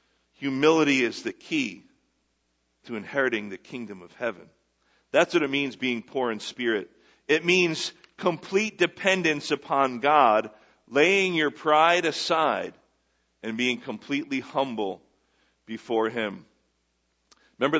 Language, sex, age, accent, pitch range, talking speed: English, male, 50-69, American, 120-160 Hz, 120 wpm